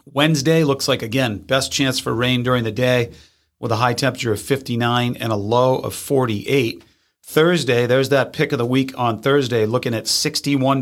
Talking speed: 190 wpm